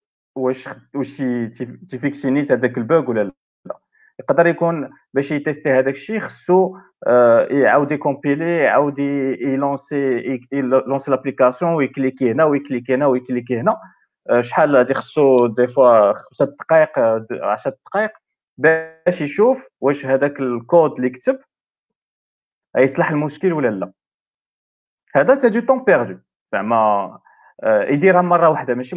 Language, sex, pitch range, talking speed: Arabic, male, 130-170 Hz, 125 wpm